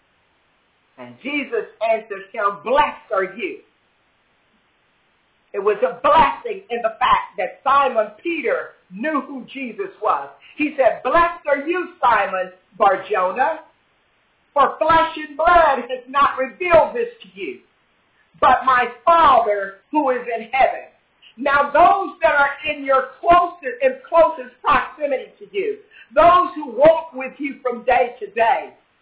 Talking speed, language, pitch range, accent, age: 130 wpm, English, 255-360 Hz, American, 50-69